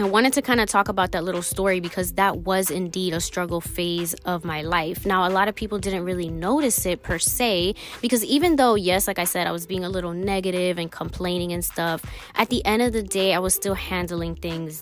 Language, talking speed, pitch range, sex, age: English, 240 wpm, 175-200 Hz, female, 20-39